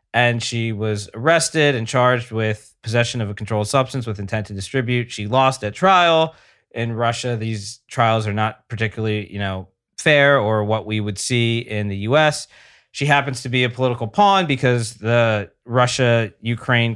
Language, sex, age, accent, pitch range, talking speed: English, male, 20-39, American, 110-130 Hz, 170 wpm